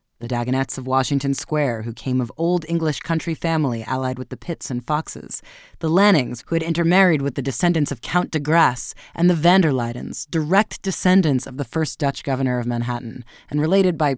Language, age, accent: English, 30-49, American